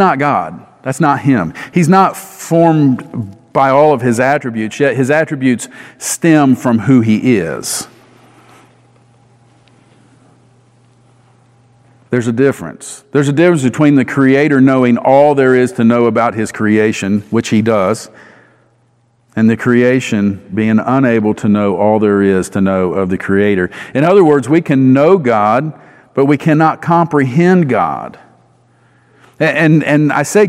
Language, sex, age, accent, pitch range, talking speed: English, male, 50-69, American, 110-140 Hz, 145 wpm